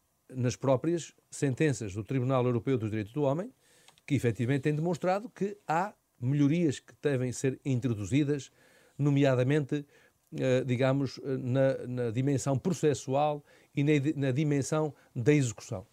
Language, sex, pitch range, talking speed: Portuguese, male, 125-160 Hz, 125 wpm